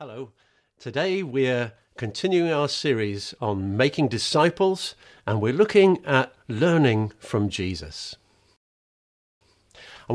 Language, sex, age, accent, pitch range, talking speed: English, male, 50-69, British, 110-165 Hz, 100 wpm